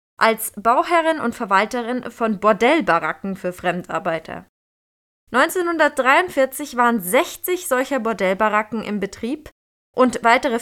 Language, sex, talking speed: German, female, 95 wpm